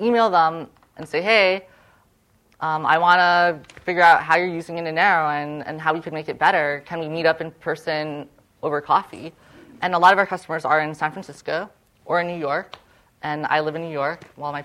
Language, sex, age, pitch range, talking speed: English, female, 20-39, 145-175 Hz, 220 wpm